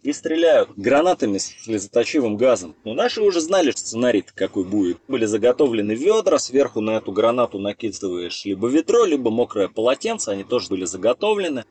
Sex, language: male, Russian